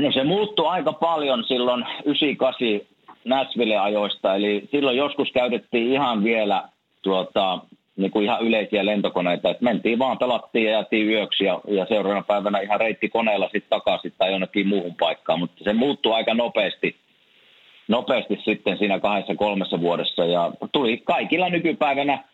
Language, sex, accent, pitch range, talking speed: Finnish, male, native, 95-120 Hz, 145 wpm